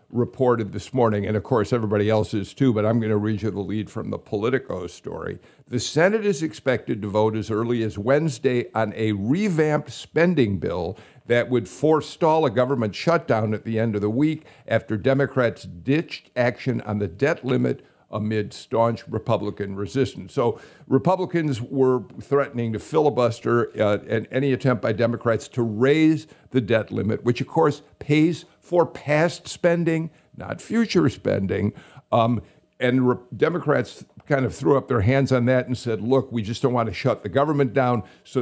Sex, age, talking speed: male, 50-69, 175 wpm